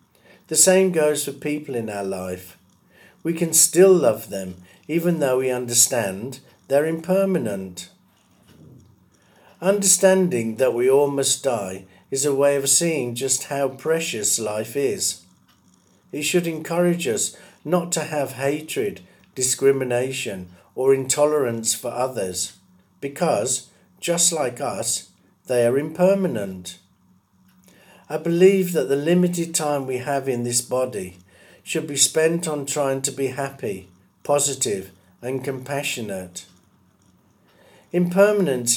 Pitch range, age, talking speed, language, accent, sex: 115-160 Hz, 50-69, 120 wpm, English, British, male